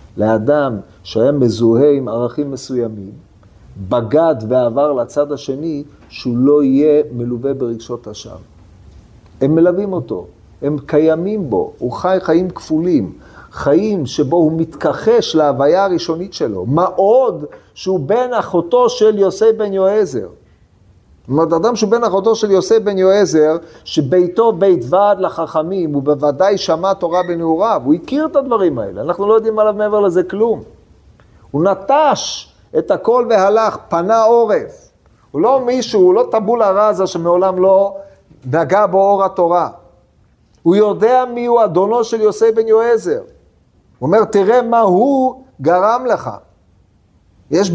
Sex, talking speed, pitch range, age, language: male, 135 wpm, 145-220 Hz, 50-69, Hebrew